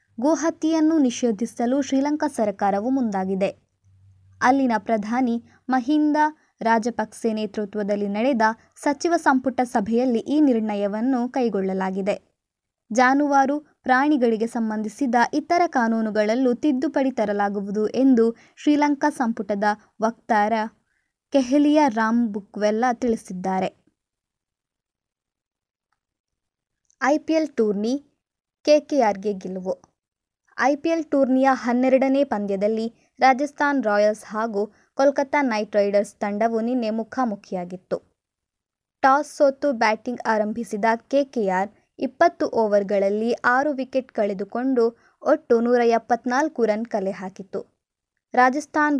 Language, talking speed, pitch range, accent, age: Kannada, 80 wpm, 215-275 Hz, native, 20-39